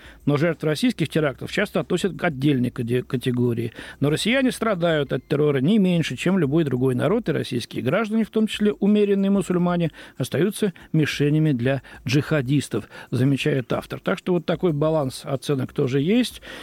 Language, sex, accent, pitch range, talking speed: Russian, male, native, 130-165 Hz, 150 wpm